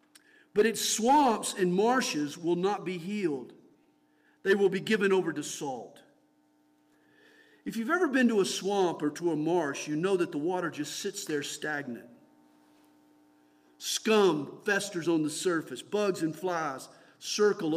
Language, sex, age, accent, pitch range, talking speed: English, male, 50-69, American, 145-230 Hz, 150 wpm